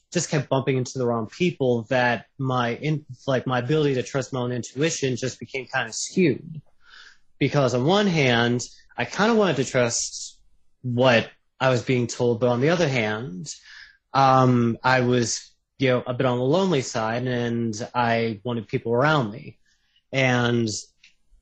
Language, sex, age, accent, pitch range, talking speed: English, male, 30-49, American, 120-150 Hz, 170 wpm